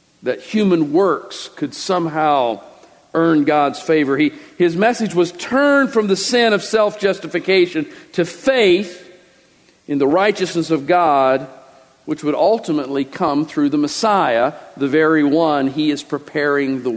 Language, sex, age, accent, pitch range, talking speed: English, male, 50-69, American, 135-180 Hz, 135 wpm